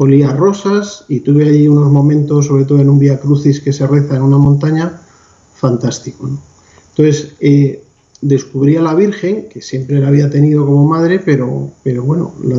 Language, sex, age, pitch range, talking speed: Spanish, male, 40-59, 135-155 Hz, 180 wpm